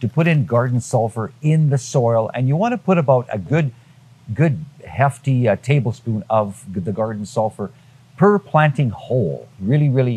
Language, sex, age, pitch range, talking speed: English, male, 50-69, 115-145 Hz, 170 wpm